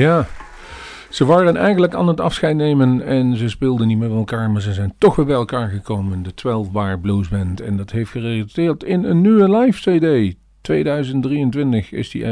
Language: Dutch